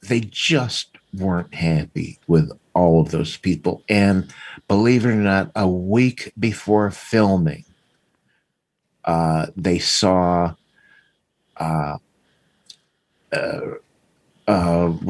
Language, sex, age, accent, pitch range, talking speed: English, male, 50-69, American, 85-100 Hz, 95 wpm